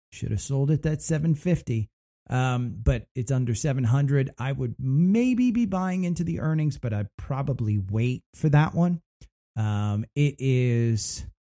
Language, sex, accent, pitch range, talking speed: English, male, American, 115-150 Hz, 150 wpm